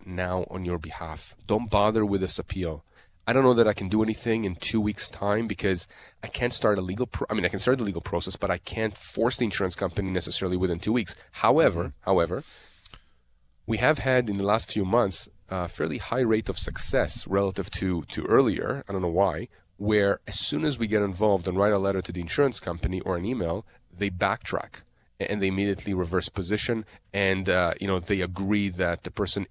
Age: 30-49